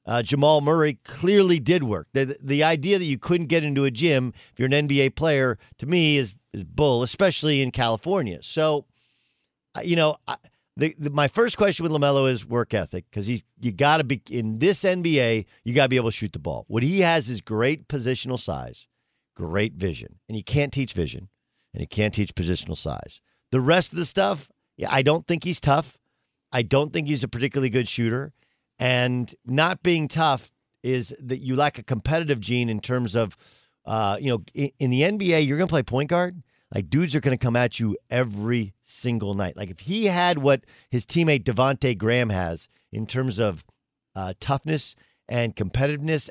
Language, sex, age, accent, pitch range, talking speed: English, male, 50-69, American, 115-155 Hz, 200 wpm